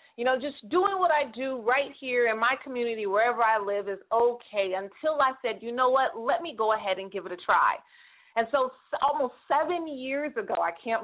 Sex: female